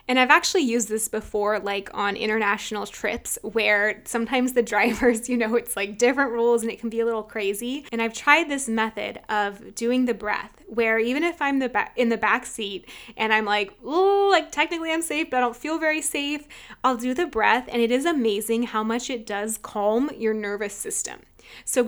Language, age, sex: English, 20-39, female